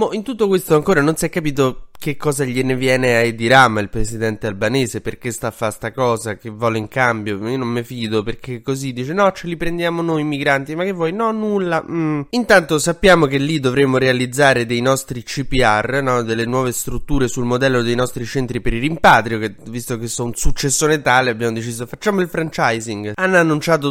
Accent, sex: native, male